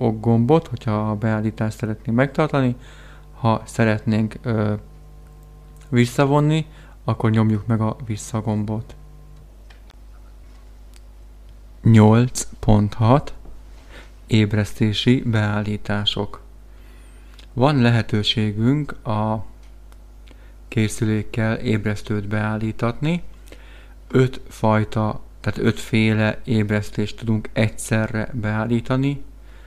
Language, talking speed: Hungarian, 65 wpm